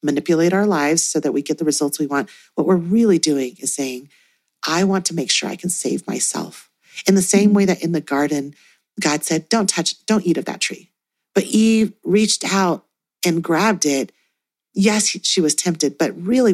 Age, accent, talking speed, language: 40-59, American, 205 wpm, English